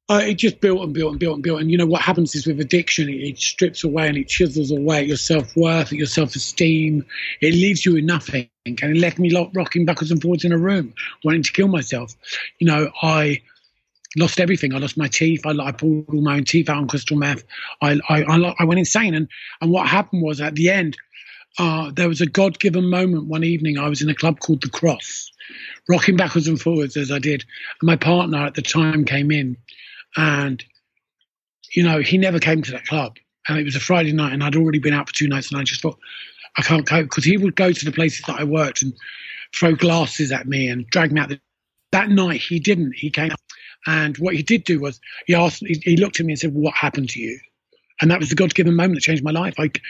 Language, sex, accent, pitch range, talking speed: English, male, British, 150-175 Hz, 240 wpm